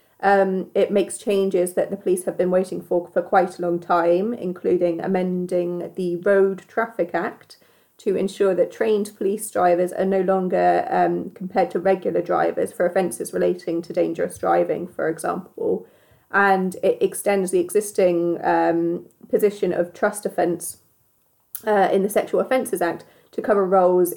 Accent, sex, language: British, female, English